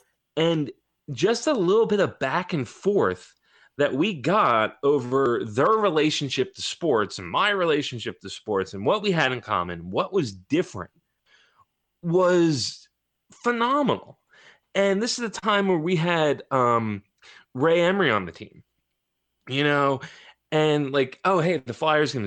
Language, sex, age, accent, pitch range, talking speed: English, male, 30-49, American, 120-195 Hz, 150 wpm